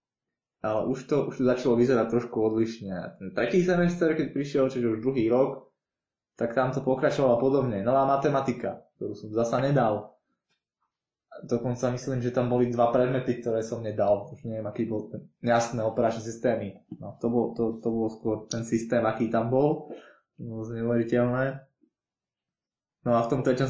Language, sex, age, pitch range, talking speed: Slovak, male, 20-39, 115-125 Hz, 165 wpm